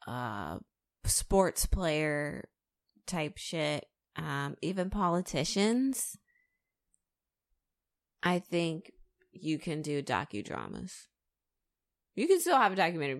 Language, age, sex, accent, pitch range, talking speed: English, 20-39, female, American, 130-170 Hz, 90 wpm